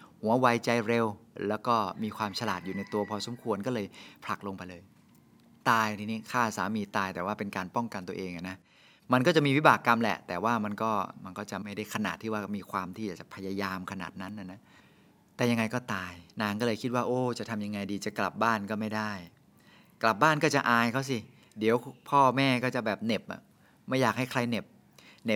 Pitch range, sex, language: 100-130 Hz, male, Thai